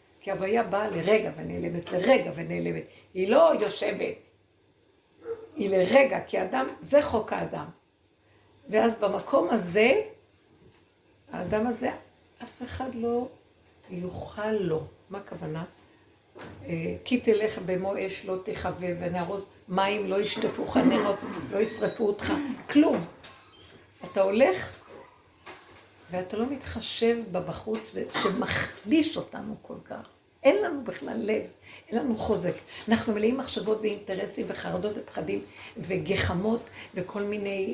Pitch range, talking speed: 180-235 Hz, 115 wpm